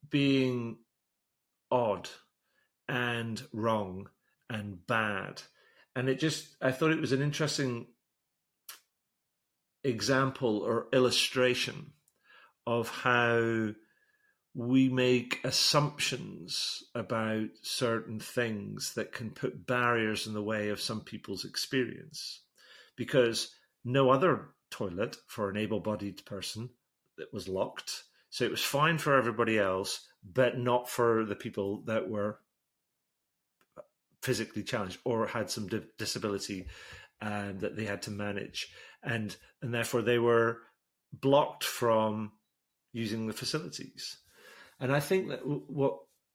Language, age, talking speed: English, 40-59, 115 wpm